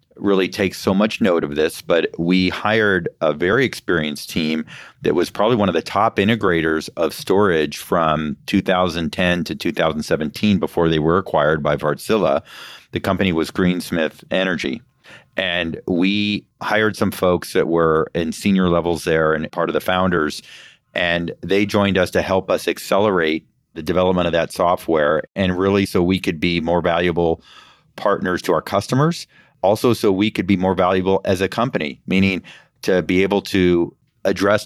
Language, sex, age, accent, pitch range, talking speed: English, male, 40-59, American, 85-100 Hz, 165 wpm